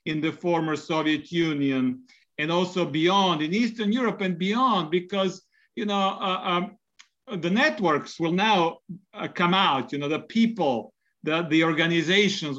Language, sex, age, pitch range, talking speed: English, male, 50-69, 165-205 Hz, 155 wpm